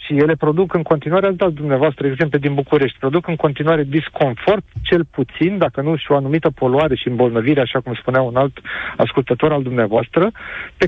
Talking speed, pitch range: 190 wpm, 150-200 Hz